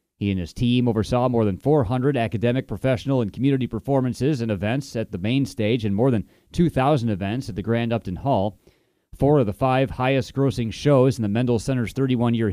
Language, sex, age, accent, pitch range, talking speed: English, male, 30-49, American, 110-135 Hz, 190 wpm